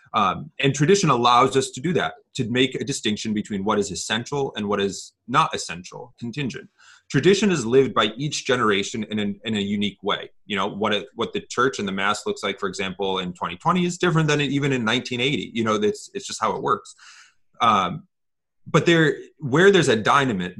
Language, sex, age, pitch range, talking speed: English, male, 30-49, 105-150 Hz, 205 wpm